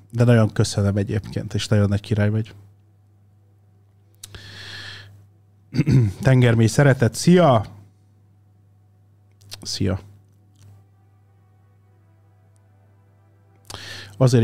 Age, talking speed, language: 30-49, 60 wpm, Hungarian